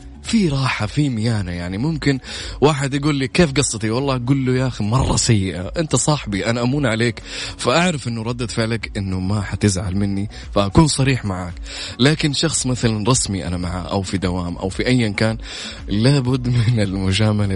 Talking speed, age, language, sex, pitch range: 175 wpm, 20-39, English, male, 95-125 Hz